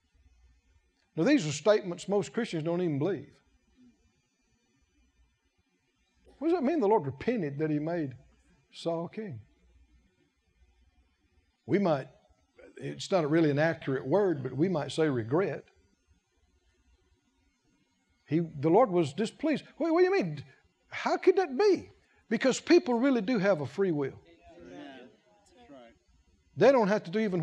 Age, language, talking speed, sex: 60-79, English, 135 wpm, male